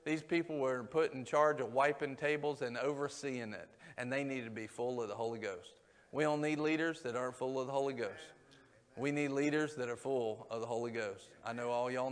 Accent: American